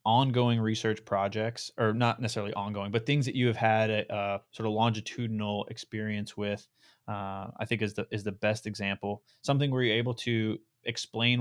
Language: English